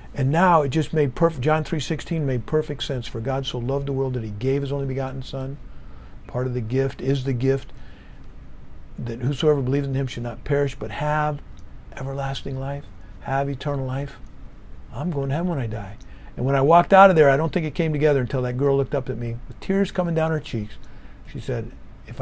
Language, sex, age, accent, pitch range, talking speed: English, male, 50-69, American, 115-145 Hz, 225 wpm